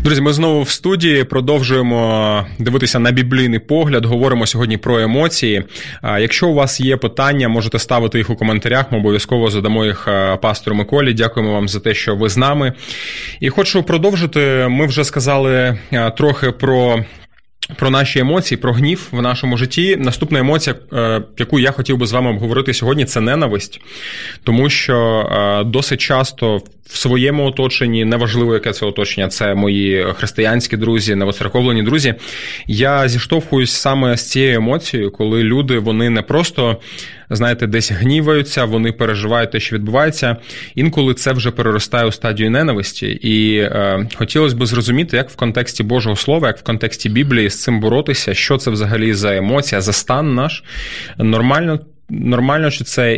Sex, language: male, Ukrainian